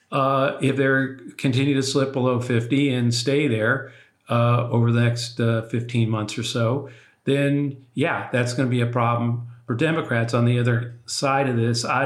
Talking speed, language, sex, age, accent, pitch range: 185 wpm, English, male, 50-69, American, 115-125 Hz